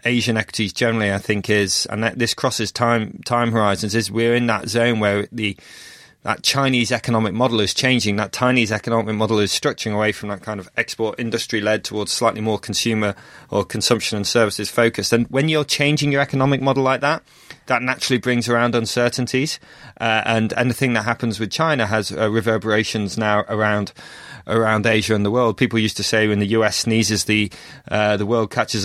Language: English